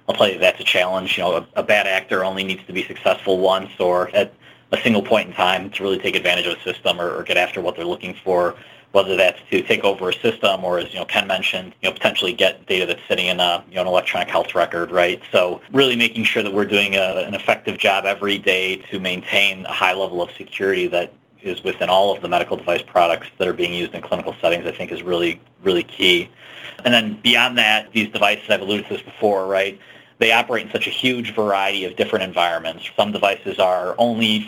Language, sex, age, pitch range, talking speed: English, male, 40-59, 95-110 Hz, 240 wpm